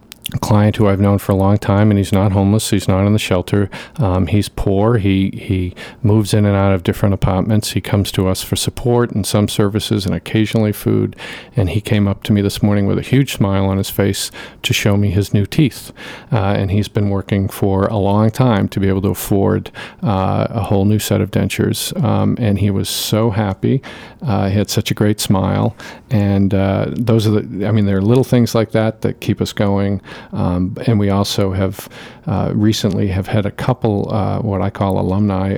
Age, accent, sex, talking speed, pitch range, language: 50-69, American, male, 220 wpm, 95-110 Hz, English